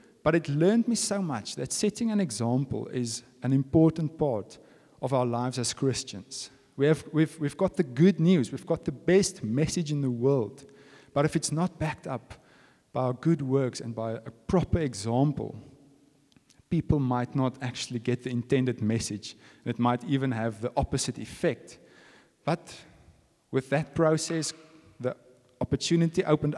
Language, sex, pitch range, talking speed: English, male, 125-165 Hz, 160 wpm